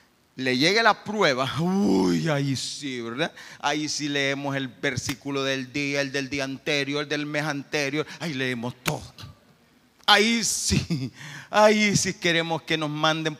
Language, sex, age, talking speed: Spanish, male, 30-49, 150 wpm